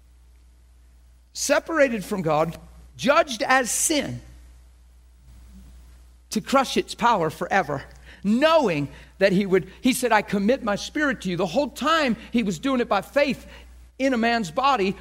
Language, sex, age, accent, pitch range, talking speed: English, male, 50-69, American, 150-245 Hz, 145 wpm